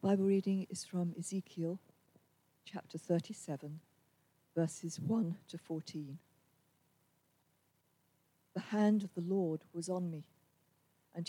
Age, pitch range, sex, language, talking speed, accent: 50-69, 155-185 Hz, female, English, 105 wpm, British